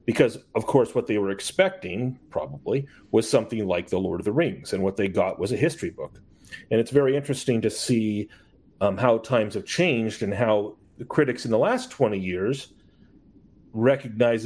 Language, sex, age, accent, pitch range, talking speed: English, male, 40-59, American, 100-125 Hz, 185 wpm